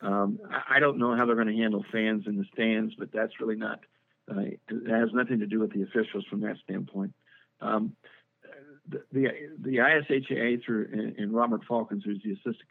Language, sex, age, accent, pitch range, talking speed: English, male, 50-69, American, 110-135 Hz, 195 wpm